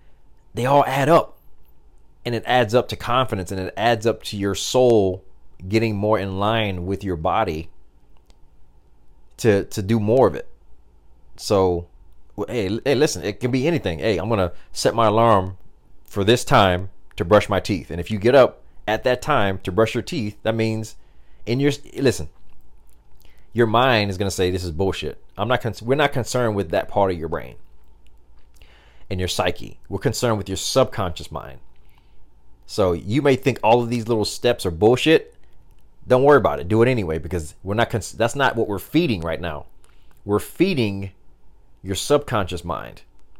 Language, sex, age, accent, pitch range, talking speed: English, male, 30-49, American, 80-115 Hz, 180 wpm